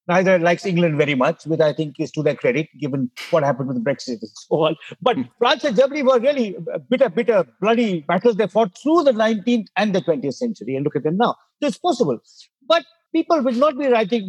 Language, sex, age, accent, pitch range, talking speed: English, male, 50-69, Indian, 165-240 Hz, 225 wpm